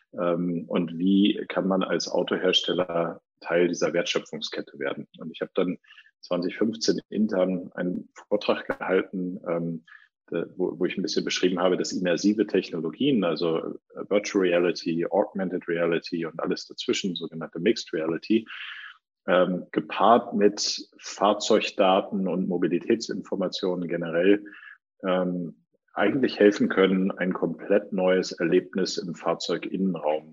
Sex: male